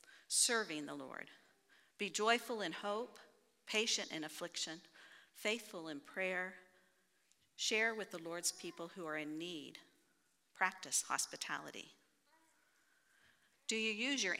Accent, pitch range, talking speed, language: American, 170-220 Hz, 115 wpm, English